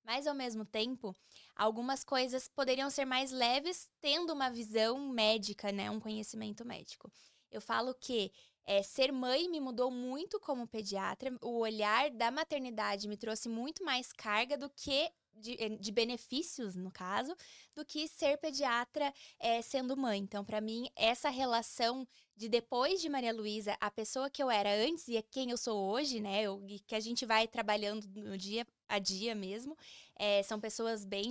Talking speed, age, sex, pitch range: 175 wpm, 10-29, female, 210-260 Hz